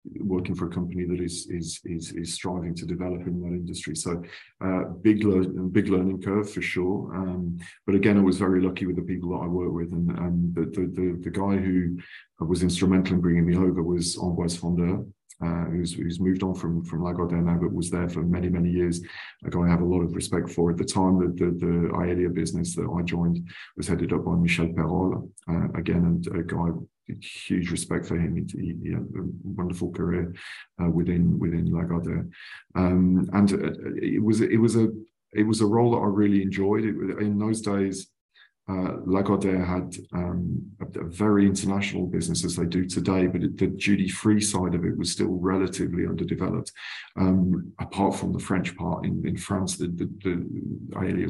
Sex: male